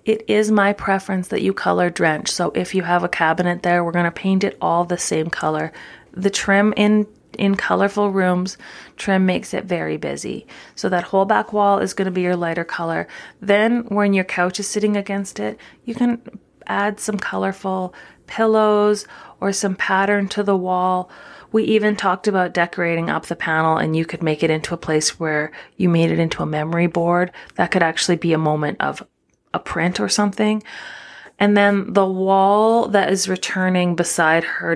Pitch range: 170-205 Hz